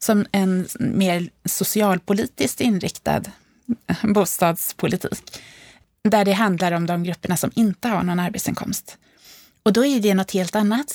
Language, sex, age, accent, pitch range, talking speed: Swedish, female, 20-39, native, 180-220 Hz, 130 wpm